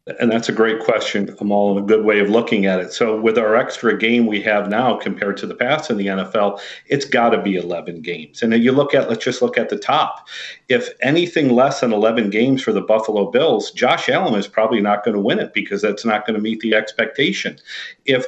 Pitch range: 105-130 Hz